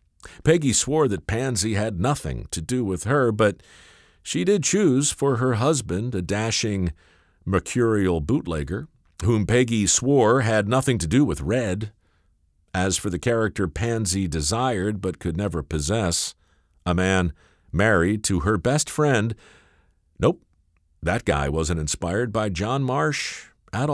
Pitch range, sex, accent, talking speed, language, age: 85-120 Hz, male, American, 140 wpm, English, 50-69